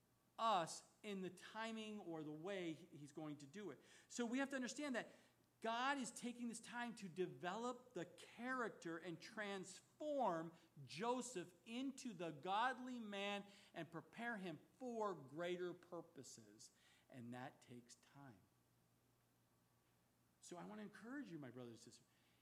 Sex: male